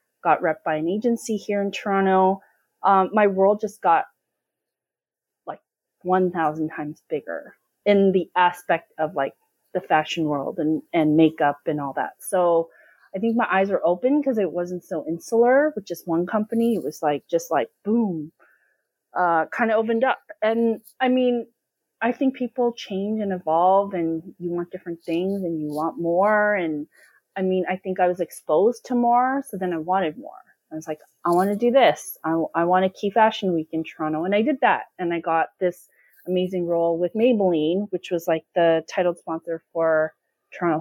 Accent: American